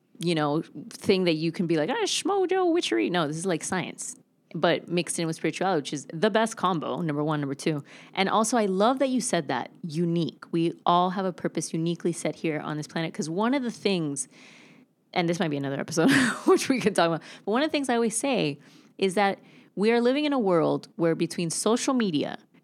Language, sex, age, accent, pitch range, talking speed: English, female, 20-39, American, 165-230 Hz, 230 wpm